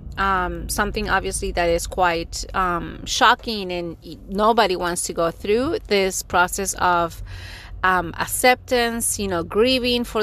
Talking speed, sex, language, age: 135 wpm, female, English, 30-49